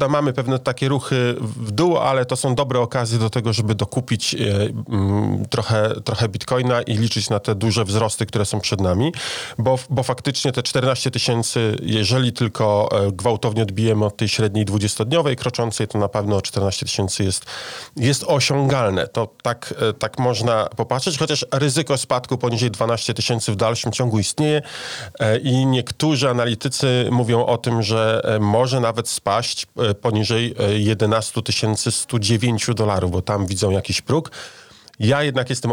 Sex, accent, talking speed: male, native, 150 wpm